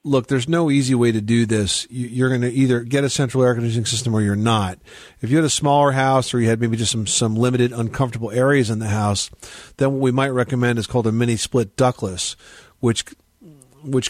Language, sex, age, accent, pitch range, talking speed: English, male, 40-59, American, 110-130 Hz, 220 wpm